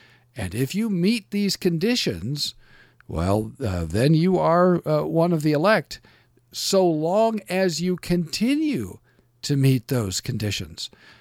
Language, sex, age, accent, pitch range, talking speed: English, male, 50-69, American, 120-175 Hz, 135 wpm